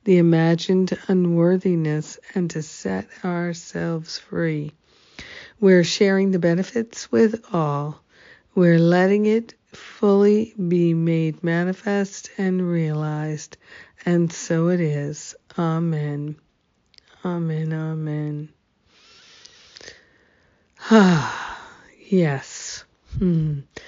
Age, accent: 50-69, American